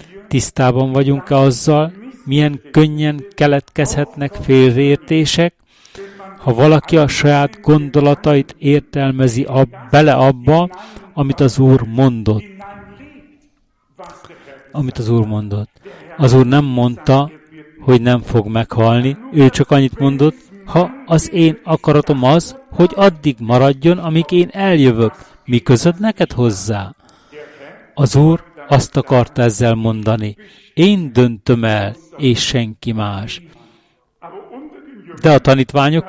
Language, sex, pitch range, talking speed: Hungarian, male, 130-170 Hz, 110 wpm